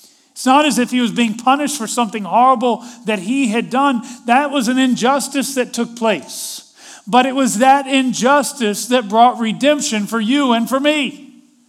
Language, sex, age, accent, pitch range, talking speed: English, male, 40-59, American, 180-255 Hz, 180 wpm